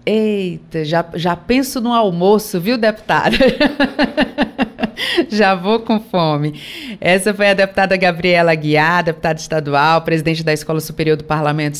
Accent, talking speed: Brazilian, 130 wpm